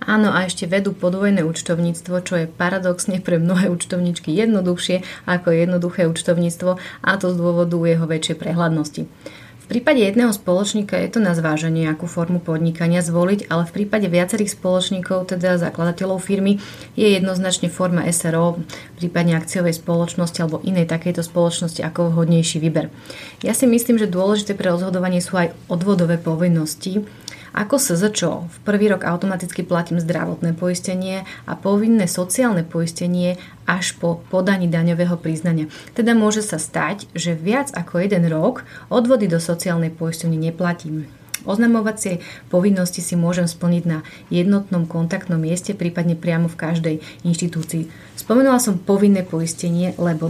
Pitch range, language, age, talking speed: 170-190 Hz, Slovak, 30-49, 140 wpm